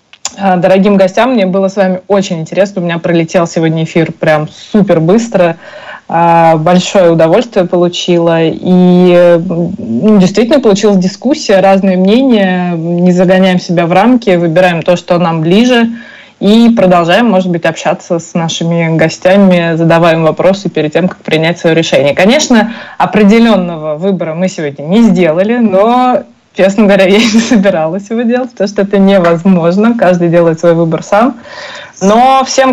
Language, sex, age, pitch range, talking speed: Russian, female, 20-39, 170-210 Hz, 145 wpm